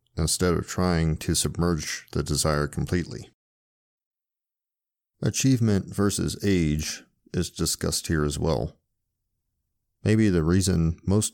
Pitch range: 80-100 Hz